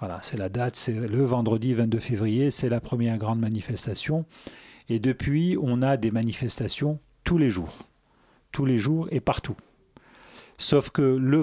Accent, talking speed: French, 165 wpm